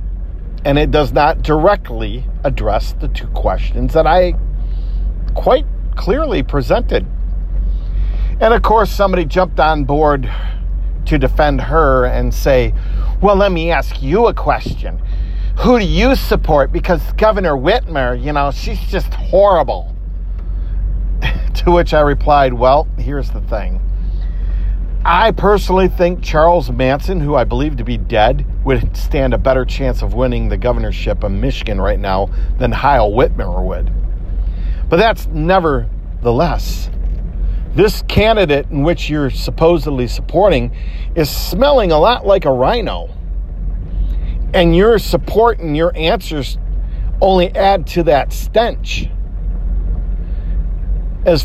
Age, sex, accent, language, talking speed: 50-69, male, American, English, 130 wpm